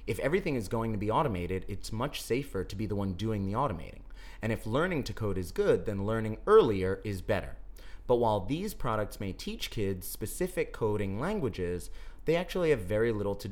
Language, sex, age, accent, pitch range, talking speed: English, male, 30-49, American, 95-125 Hz, 200 wpm